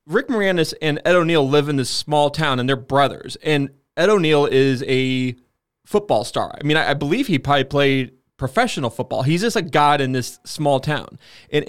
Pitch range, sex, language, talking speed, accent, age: 130-170 Hz, male, English, 200 wpm, American, 20-39